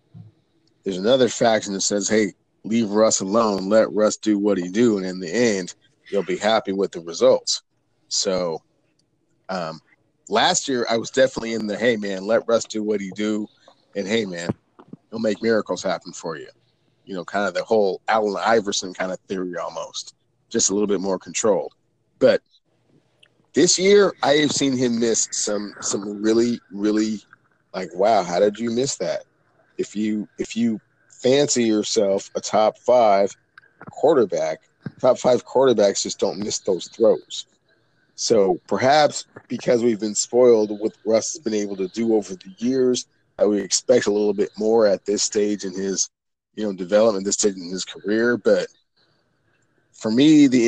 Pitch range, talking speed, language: 105-120 Hz, 175 wpm, English